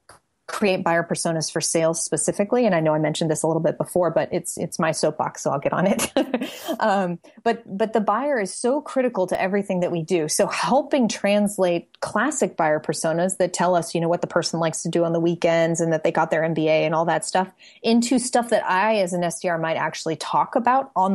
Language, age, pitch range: English, 30-49, 170-210 Hz